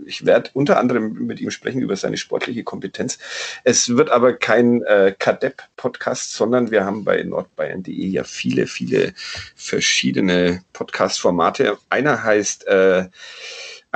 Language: German